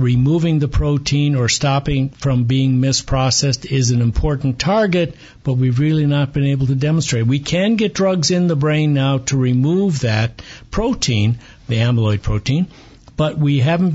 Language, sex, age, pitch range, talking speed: English, male, 60-79, 125-150 Hz, 165 wpm